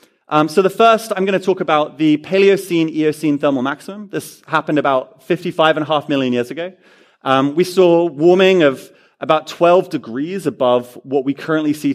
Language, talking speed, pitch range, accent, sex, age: English, 180 wpm, 140-180 Hz, British, male, 30-49